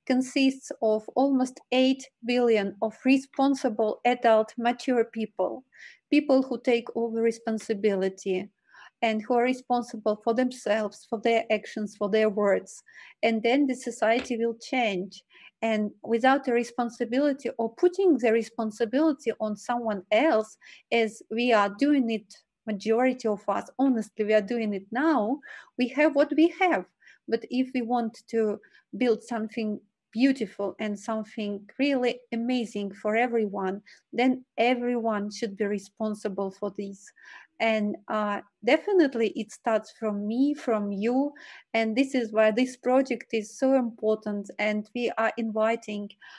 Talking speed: 135 wpm